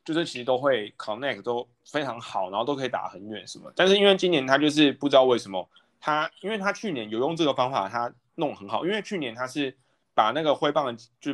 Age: 20-39